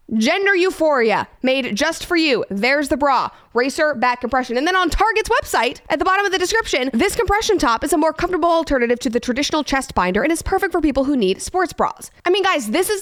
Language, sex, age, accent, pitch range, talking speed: English, female, 20-39, American, 235-345 Hz, 230 wpm